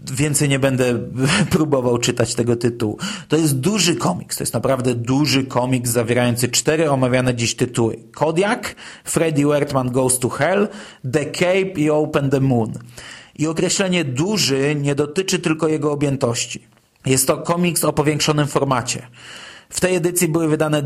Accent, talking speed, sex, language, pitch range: native, 150 wpm, male, Polish, 130-170 Hz